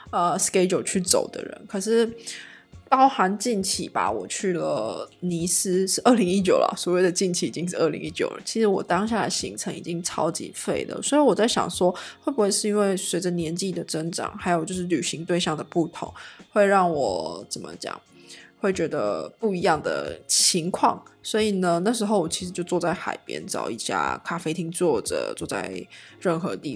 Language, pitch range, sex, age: Chinese, 175-220 Hz, female, 20-39